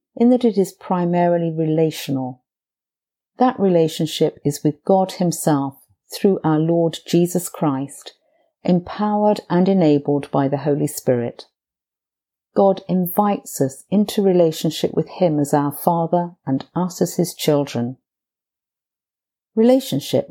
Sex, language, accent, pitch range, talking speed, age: female, English, British, 145-190 Hz, 120 wpm, 50-69